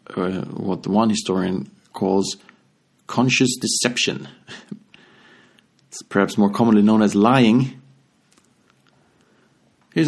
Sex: male